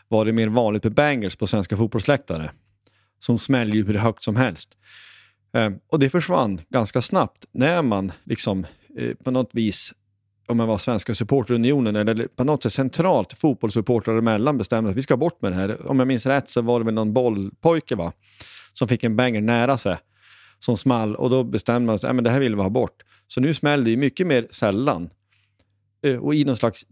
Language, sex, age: Swedish, male, 40-59